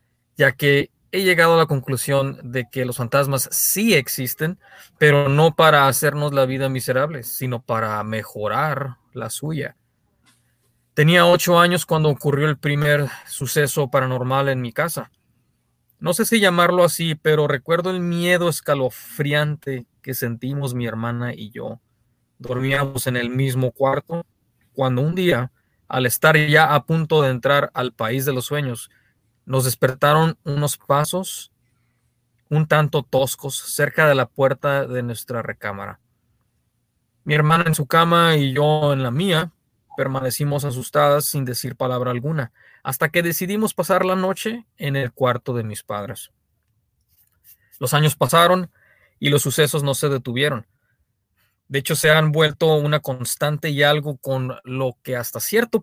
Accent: Mexican